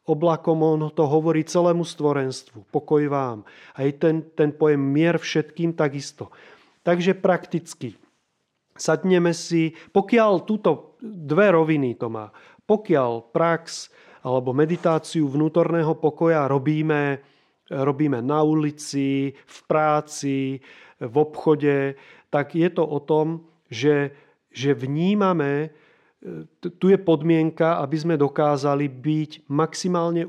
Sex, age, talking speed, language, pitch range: male, 30-49, 110 wpm, Slovak, 140-165 Hz